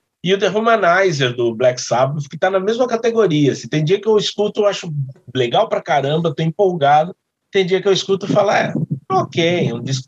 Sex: male